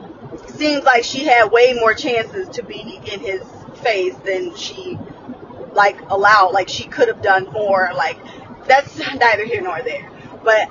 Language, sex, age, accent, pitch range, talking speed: English, female, 20-39, American, 220-310 Hz, 160 wpm